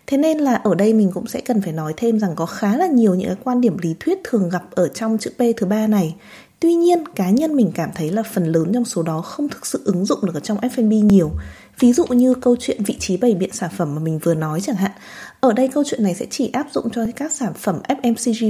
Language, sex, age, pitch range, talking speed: Vietnamese, female, 20-39, 190-255 Hz, 280 wpm